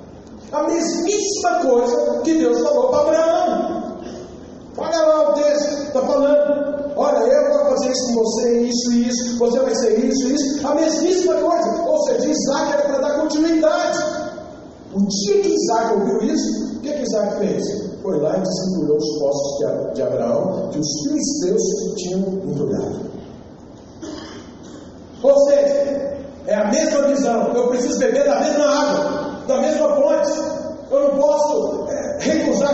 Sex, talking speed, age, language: male, 160 wpm, 60-79, Portuguese